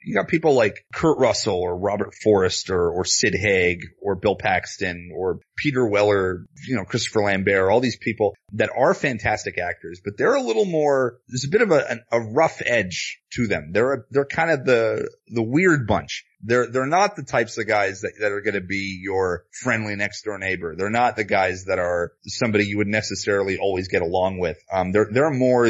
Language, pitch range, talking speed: English, 100-125 Hz, 210 wpm